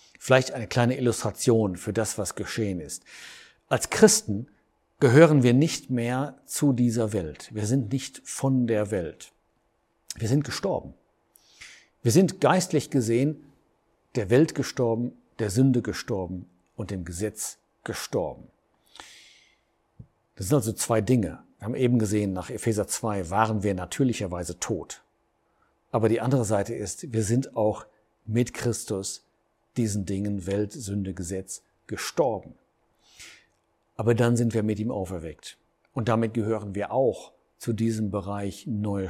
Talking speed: 135 wpm